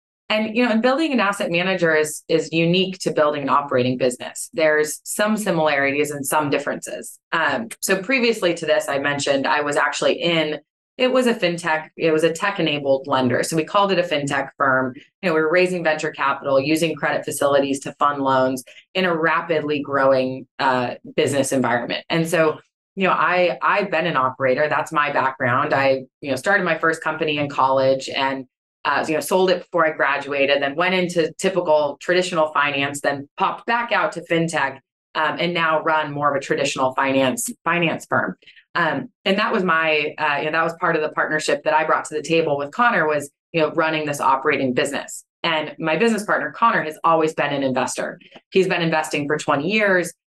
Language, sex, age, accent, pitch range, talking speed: English, female, 20-39, American, 140-170 Hz, 200 wpm